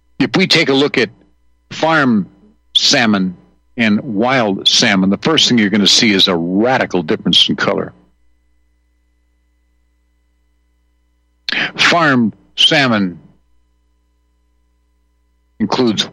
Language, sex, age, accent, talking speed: English, male, 60-79, American, 100 wpm